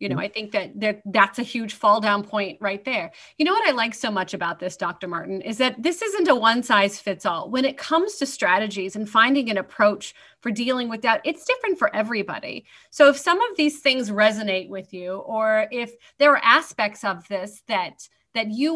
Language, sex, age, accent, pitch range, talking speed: English, female, 30-49, American, 205-280 Hz, 225 wpm